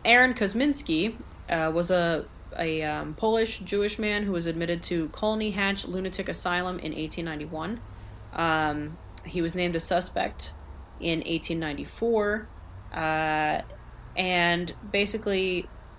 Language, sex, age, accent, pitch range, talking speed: English, female, 20-39, American, 155-190 Hz, 115 wpm